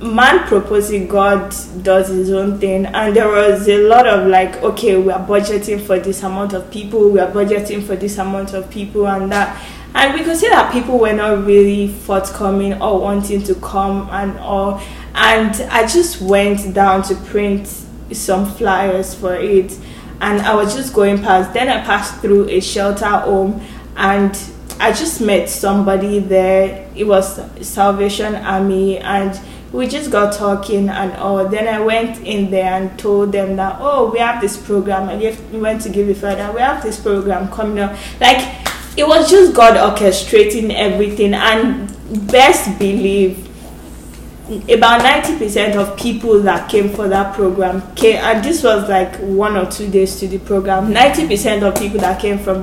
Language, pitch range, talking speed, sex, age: English, 195-215 Hz, 180 wpm, female, 10-29